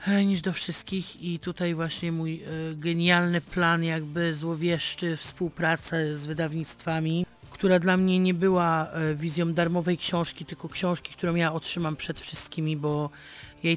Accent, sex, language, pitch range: native, male, Polish, 155-170 Hz